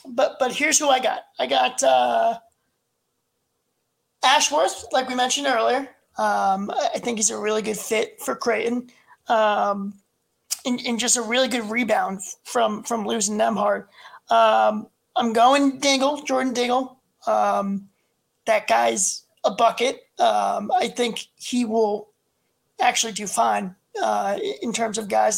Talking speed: 145 wpm